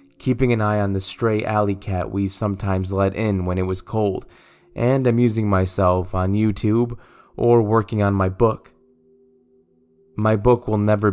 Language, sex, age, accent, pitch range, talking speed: English, male, 20-39, American, 95-125 Hz, 160 wpm